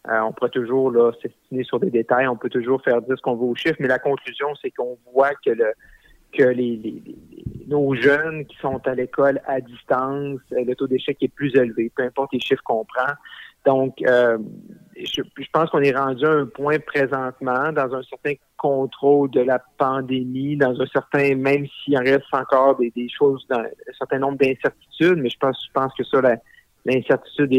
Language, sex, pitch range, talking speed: French, male, 130-145 Hz, 200 wpm